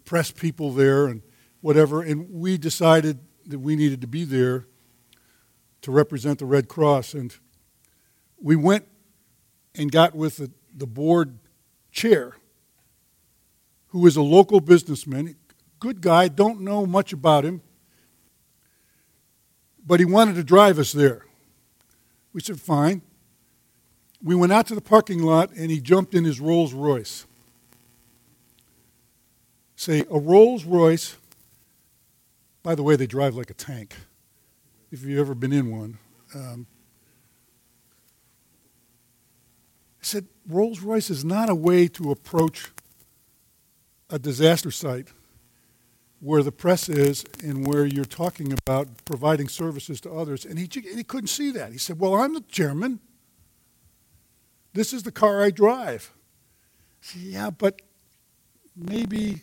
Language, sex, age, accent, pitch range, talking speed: English, male, 60-79, American, 130-180 Hz, 130 wpm